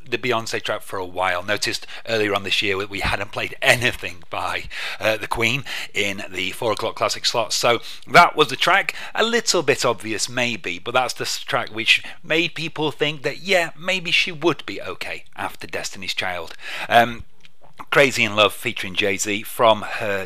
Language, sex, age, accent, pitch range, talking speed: English, male, 30-49, British, 100-145 Hz, 185 wpm